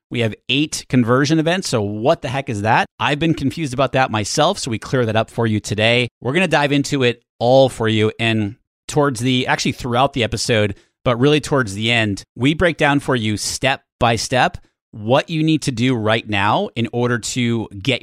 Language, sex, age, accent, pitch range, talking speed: English, male, 30-49, American, 105-135 Hz, 215 wpm